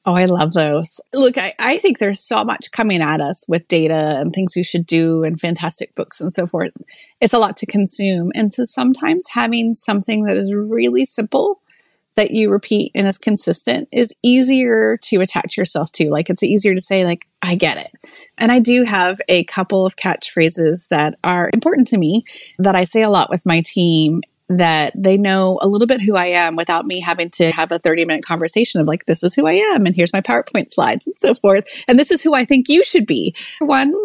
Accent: American